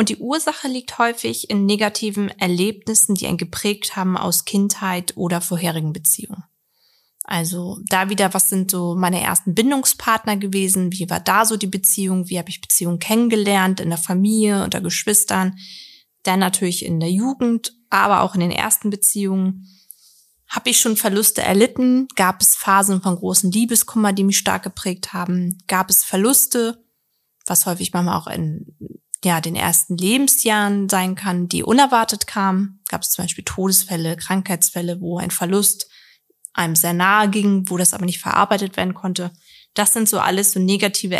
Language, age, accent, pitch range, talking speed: German, 20-39, German, 185-215 Hz, 165 wpm